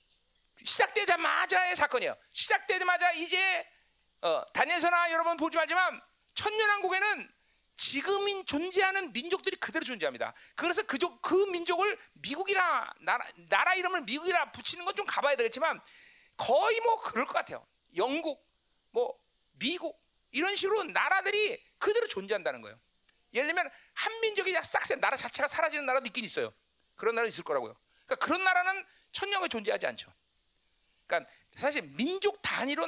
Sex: male